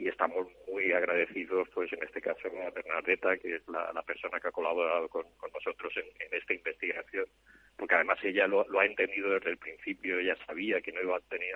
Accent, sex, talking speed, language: Spanish, male, 220 wpm, Spanish